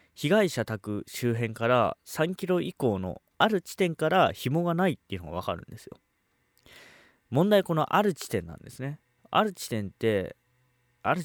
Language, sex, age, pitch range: Japanese, male, 20-39, 100-150 Hz